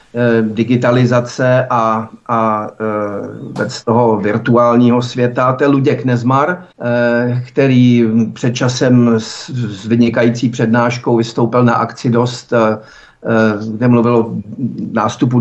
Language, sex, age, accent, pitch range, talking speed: Czech, male, 50-69, native, 120-145 Hz, 100 wpm